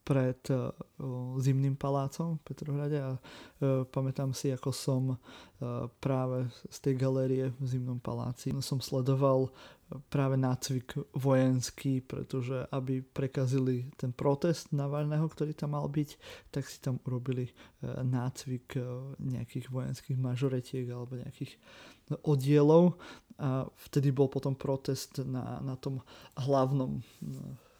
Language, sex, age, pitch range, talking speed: Slovak, male, 20-39, 130-145 Hz, 110 wpm